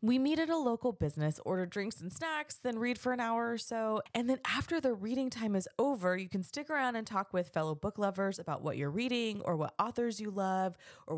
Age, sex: 20-39, female